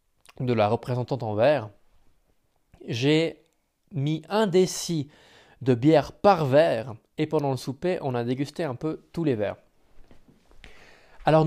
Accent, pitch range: French, 120-165 Hz